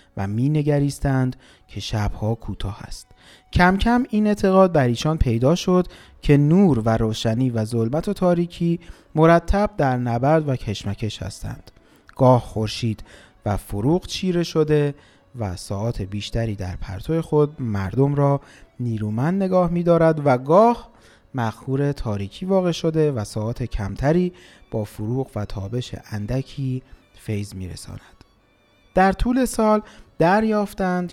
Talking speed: 130 wpm